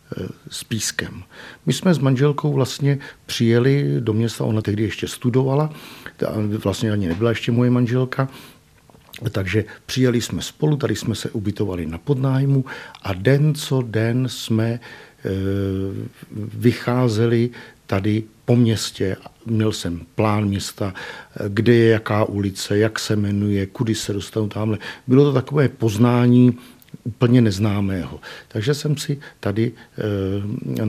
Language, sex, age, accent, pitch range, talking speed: Czech, male, 50-69, native, 100-130 Hz, 130 wpm